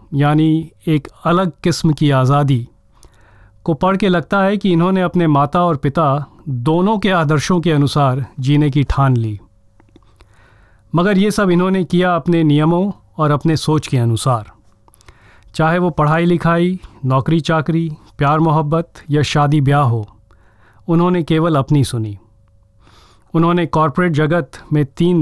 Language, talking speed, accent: Hindi, 140 wpm, native